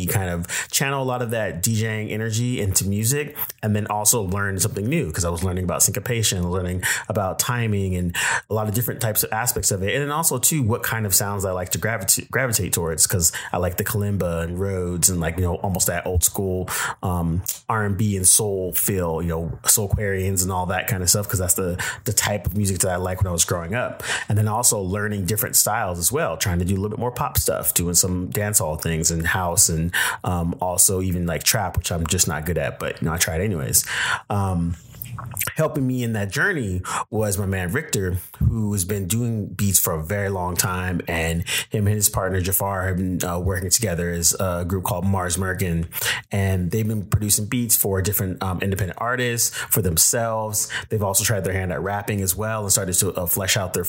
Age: 30-49